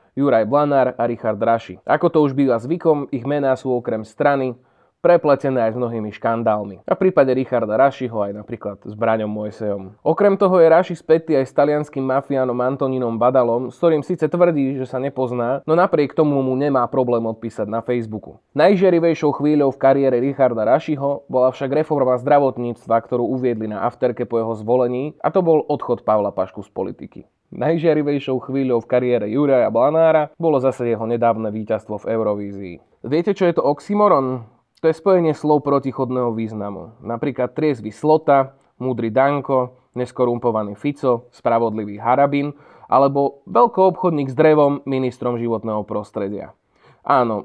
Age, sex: 20-39, male